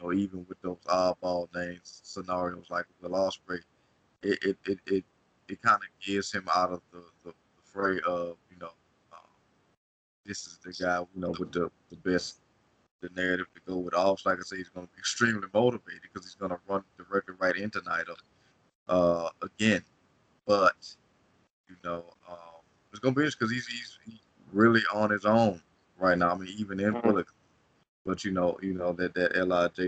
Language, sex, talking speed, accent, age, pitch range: English, male, 195 wpm, American, 20-39, 90-100 Hz